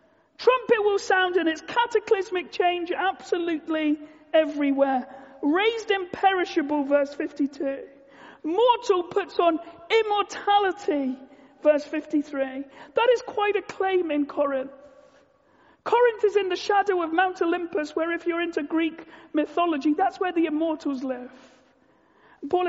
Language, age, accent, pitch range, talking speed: English, 40-59, British, 300-390 Hz, 120 wpm